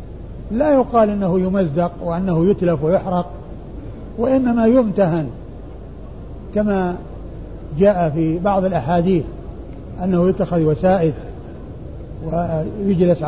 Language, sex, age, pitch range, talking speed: Arabic, male, 50-69, 170-215 Hz, 80 wpm